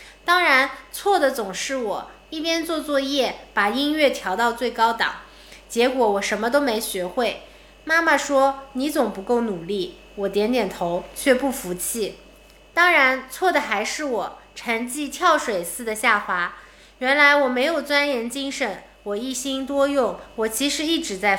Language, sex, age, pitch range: Chinese, female, 20-39, 215-290 Hz